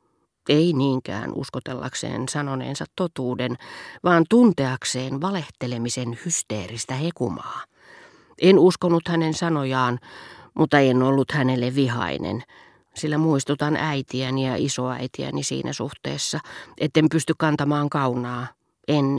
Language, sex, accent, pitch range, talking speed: Finnish, female, native, 125-155 Hz, 95 wpm